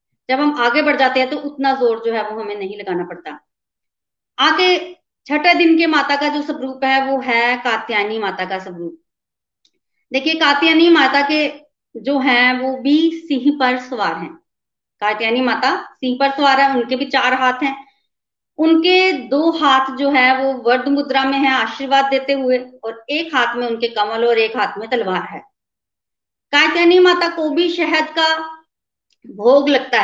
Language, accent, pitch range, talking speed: Hindi, native, 240-295 Hz, 150 wpm